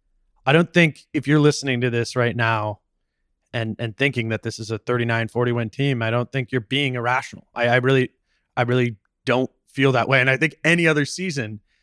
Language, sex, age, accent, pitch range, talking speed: English, male, 20-39, American, 115-135 Hz, 210 wpm